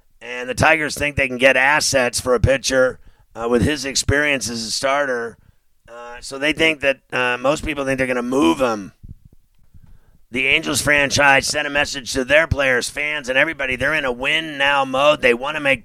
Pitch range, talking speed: 125-150 Hz, 200 wpm